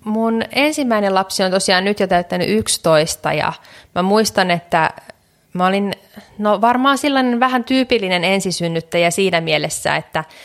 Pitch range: 170-200 Hz